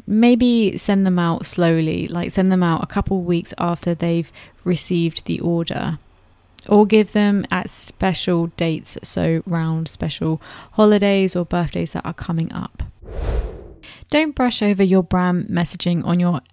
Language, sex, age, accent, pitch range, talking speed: English, female, 20-39, British, 170-205 Hz, 155 wpm